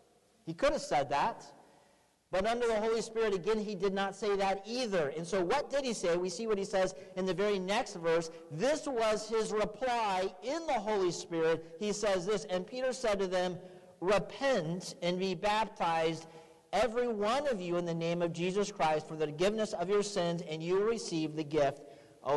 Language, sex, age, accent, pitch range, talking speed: English, male, 40-59, American, 180-225 Hz, 205 wpm